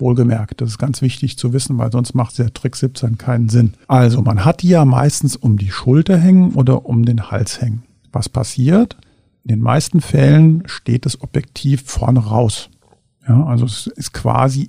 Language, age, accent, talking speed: German, 50-69, German, 190 wpm